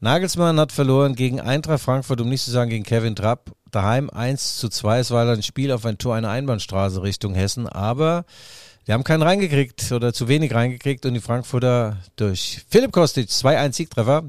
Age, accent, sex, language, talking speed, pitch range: 50-69, German, male, German, 190 wpm, 115-155 Hz